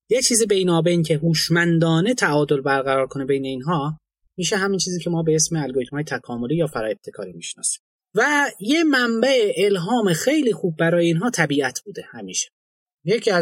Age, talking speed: 30-49, 165 wpm